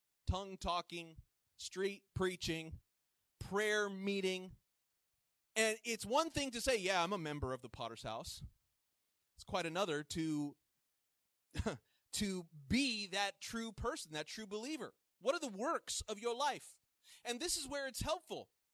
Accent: American